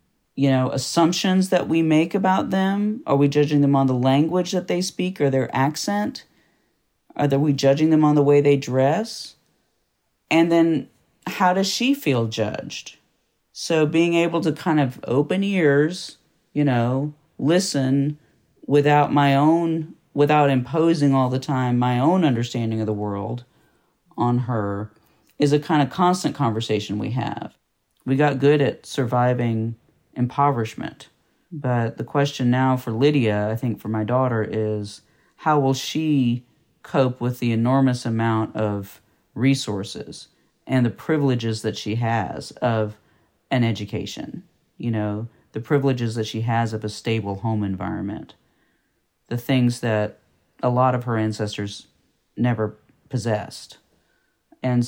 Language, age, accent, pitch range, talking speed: English, 40-59, American, 115-145 Hz, 145 wpm